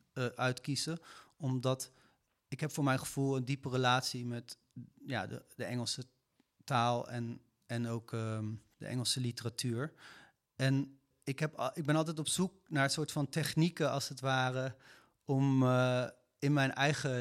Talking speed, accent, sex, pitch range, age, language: 145 wpm, Dutch, male, 125-140 Hz, 30-49, Dutch